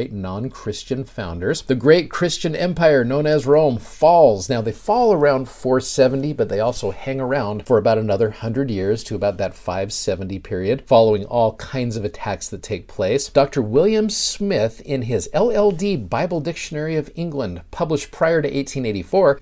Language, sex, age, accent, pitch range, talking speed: English, male, 50-69, American, 105-150 Hz, 160 wpm